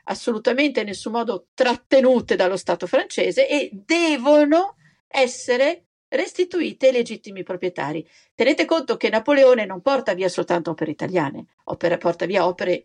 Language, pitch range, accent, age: Italian, 185-280 Hz, native, 50-69